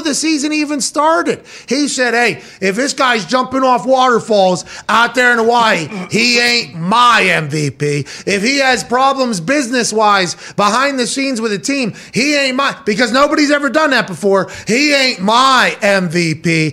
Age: 30-49